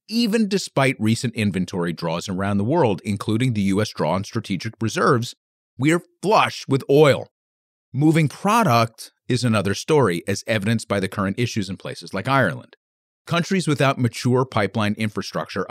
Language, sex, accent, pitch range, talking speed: English, male, American, 100-135 Hz, 155 wpm